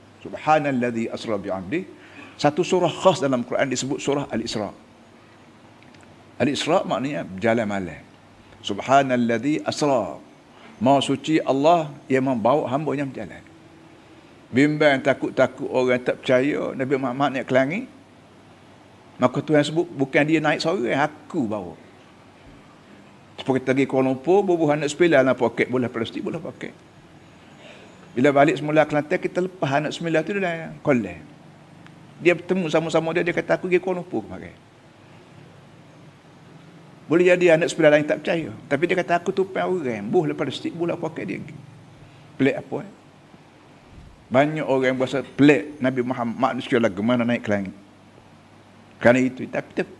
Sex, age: male, 50-69